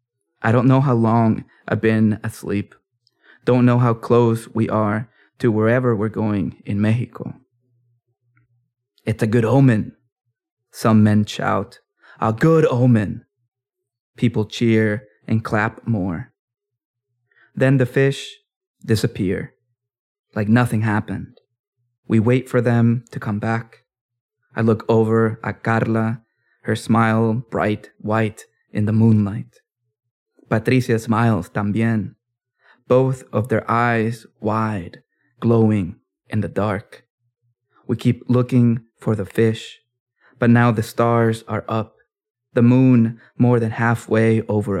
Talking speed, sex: 120 wpm, male